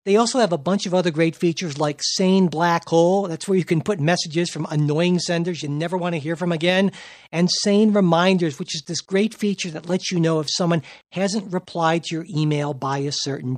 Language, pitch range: English, 160-205 Hz